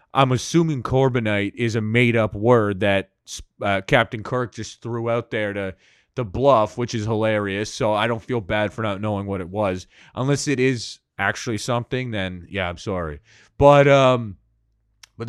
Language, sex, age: English, male, 30-49